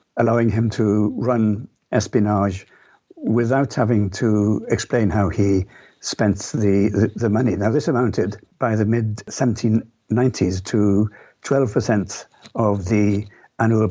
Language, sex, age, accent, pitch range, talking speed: English, male, 60-79, British, 100-120 Hz, 115 wpm